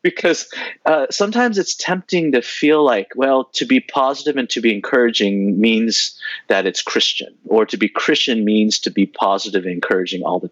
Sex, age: male, 30-49